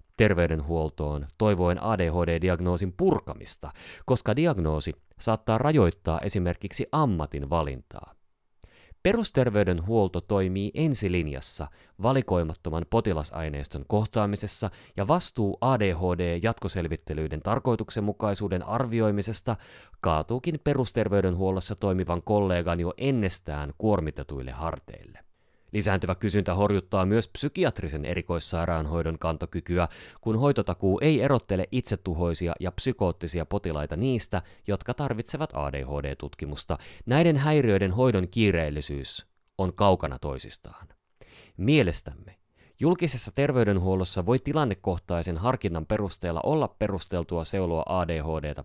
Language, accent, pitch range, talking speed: Finnish, native, 80-110 Hz, 85 wpm